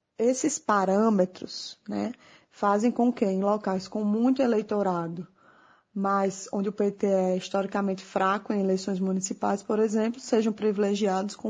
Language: Portuguese